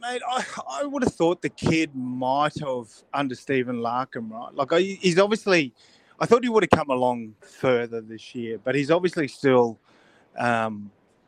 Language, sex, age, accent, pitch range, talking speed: English, male, 30-49, Australian, 125-145 Hz, 175 wpm